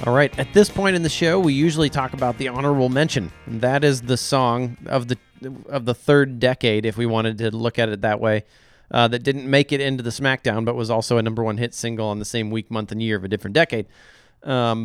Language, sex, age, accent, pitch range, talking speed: English, male, 30-49, American, 110-135 Hz, 250 wpm